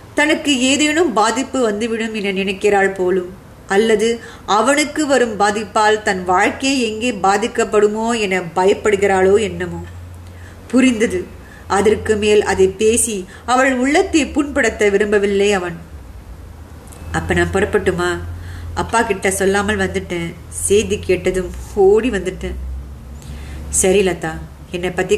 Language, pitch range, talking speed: Tamil, 180-215 Hz, 90 wpm